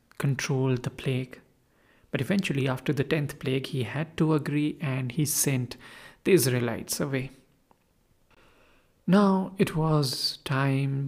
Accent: Indian